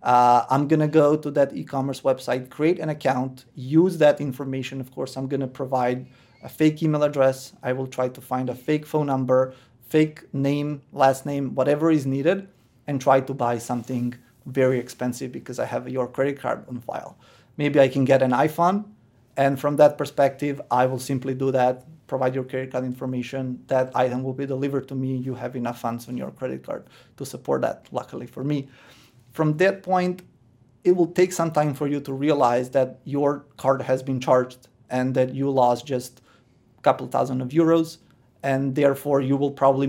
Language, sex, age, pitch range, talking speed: English, male, 30-49, 130-145 Hz, 195 wpm